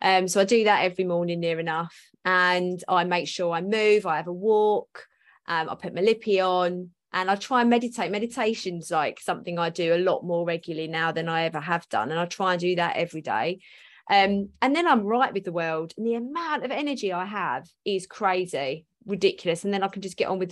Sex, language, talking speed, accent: female, English, 230 wpm, British